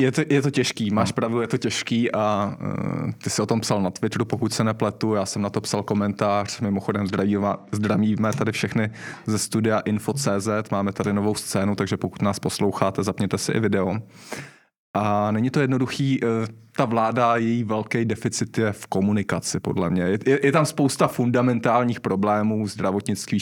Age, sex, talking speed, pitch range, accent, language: 20-39, male, 180 wpm, 100-115 Hz, native, Czech